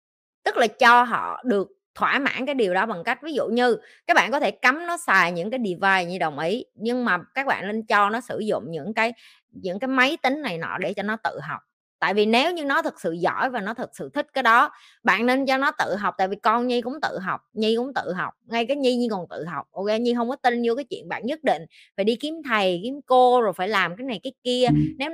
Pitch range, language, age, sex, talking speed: 200-255 Hz, Vietnamese, 20-39, female, 270 wpm